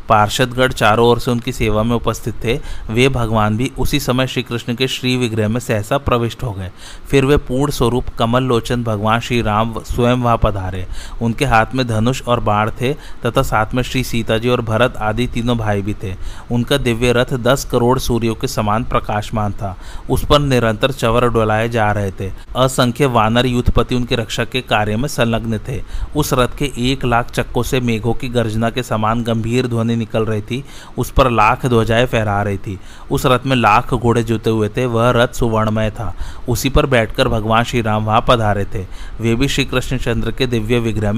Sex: male